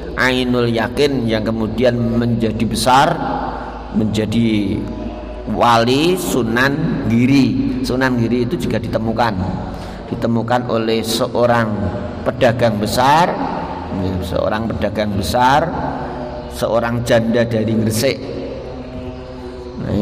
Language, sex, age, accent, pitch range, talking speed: Indonesian, male, 50-69, native, 115-135 Hz, 85 wpm